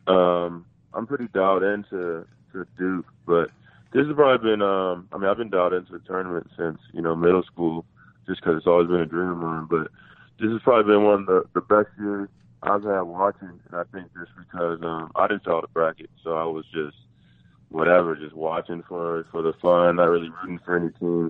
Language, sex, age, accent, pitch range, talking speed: English, male, 20-39, American, 80-95 Hz, 215 wpm